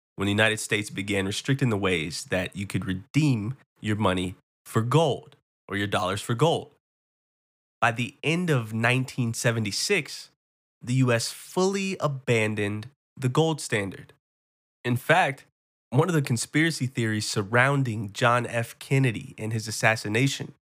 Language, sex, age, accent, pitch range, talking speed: English, male, 20-39, American, 105-145 Hz, 135 wpm